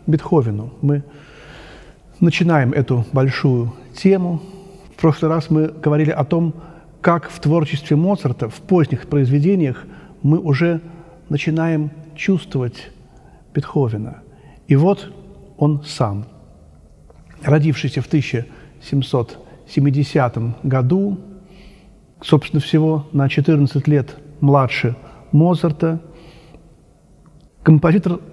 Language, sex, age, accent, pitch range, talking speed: Russian, male, 40-59, native, 140-170 Hz, 85 wpm